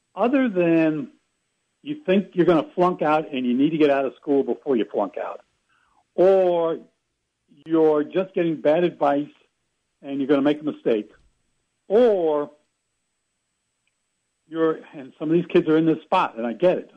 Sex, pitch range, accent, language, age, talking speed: male, 120-170 Hz, American, English, 70-89, 175 wpm